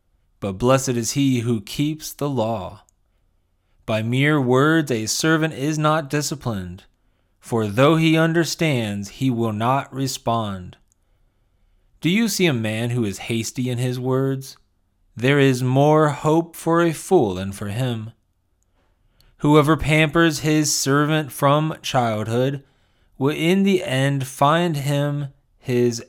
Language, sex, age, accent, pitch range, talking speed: English, male, 30-49, American, 95-145 Hz, 135 wpm